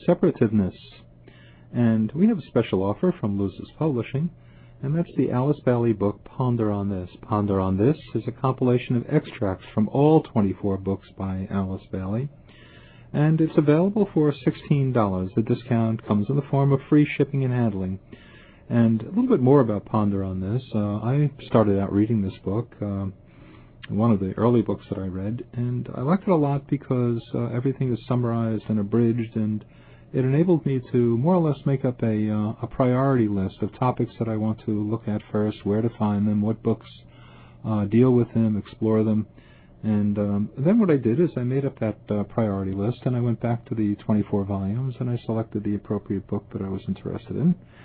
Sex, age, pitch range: male, 50-69, 105-135 Hz